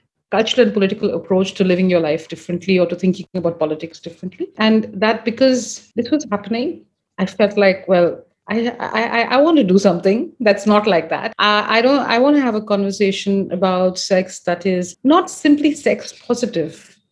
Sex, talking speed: female, 185 wpm